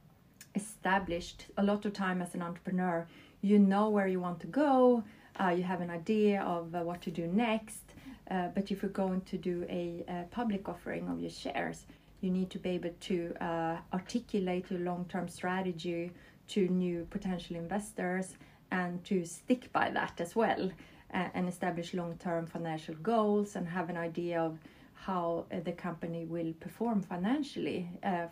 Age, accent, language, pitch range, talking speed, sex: 30-49, native, Swedish, 170-195 Hz, 170 wpm, female